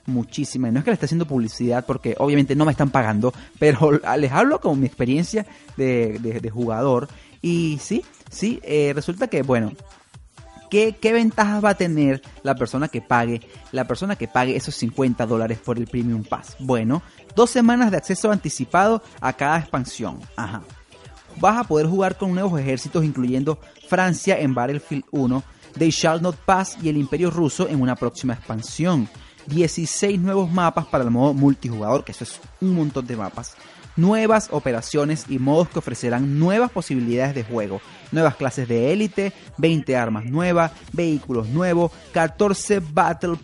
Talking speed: 165 wpm